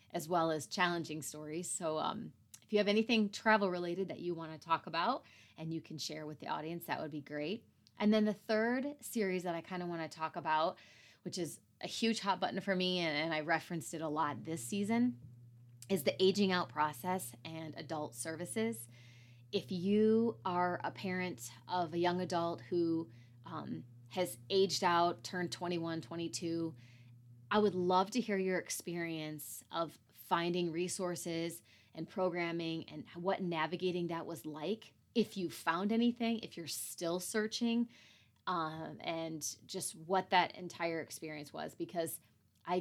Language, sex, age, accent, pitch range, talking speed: English, female, 20-39, American, 155-185 Hz, 170 wpm